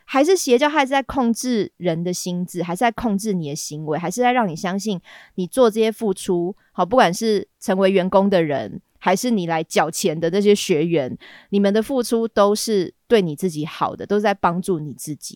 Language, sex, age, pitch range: Chinese, female, 20-39, 170-215 Hz